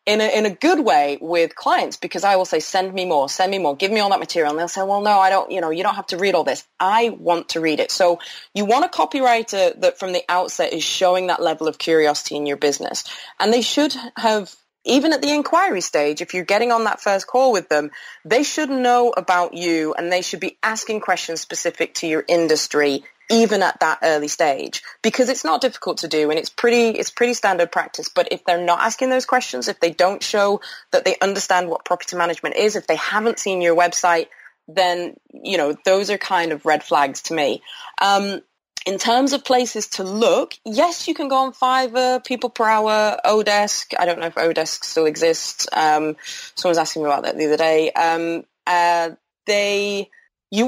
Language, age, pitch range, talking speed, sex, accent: English, 30-49, 170-235 Hz, 220 wpm, female, British